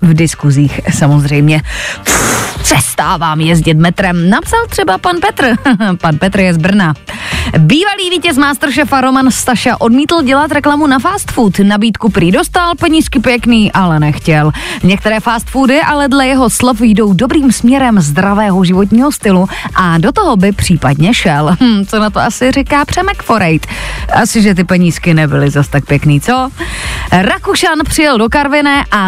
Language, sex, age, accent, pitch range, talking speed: Czech, female, 20-39, native, 180-280 Hz, 150 wpm